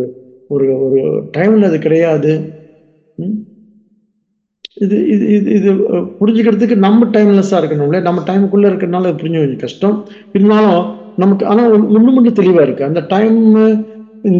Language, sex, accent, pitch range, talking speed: English, male, Indian, 170-210 Hz, 85 wpm